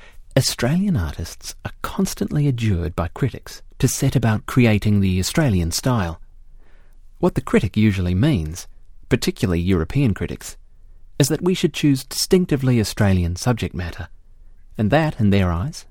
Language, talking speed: English, 135 wpm